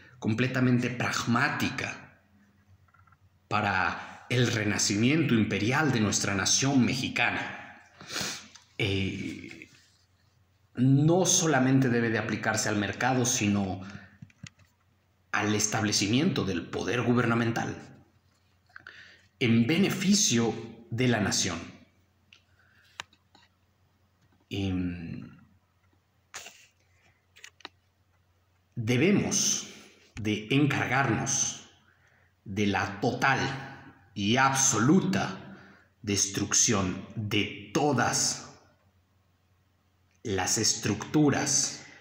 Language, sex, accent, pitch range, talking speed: Spanish, male, Mexican, 100-125 Hz, 60 wpm